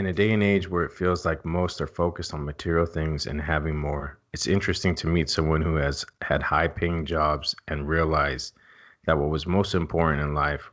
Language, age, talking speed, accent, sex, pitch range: English, 30-49, 205 wpm, American, male, 80-95 Hz